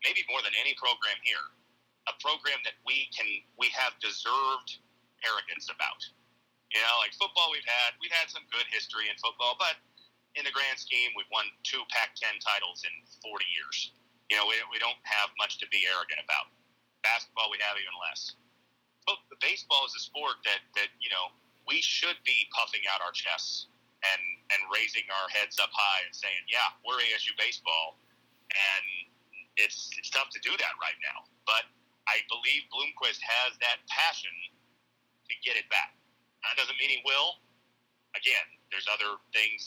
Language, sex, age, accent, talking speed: English, male, 40-59, American, 180 wpm